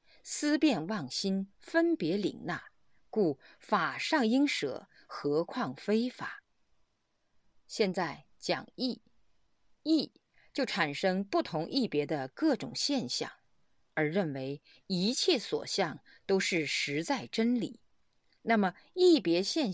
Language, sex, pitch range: Chinese, female, 165-260 Hz